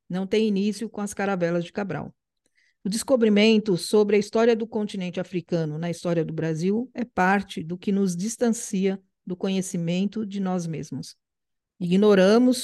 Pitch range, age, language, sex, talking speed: 185-220 Hz, 50-69, Portuguese, female, 150 wpm